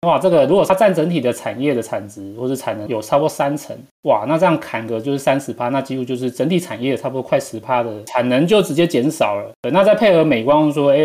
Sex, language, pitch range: male, Chinese, 120-175 Hz